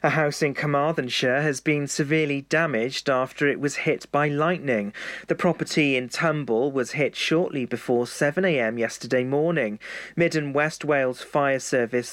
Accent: British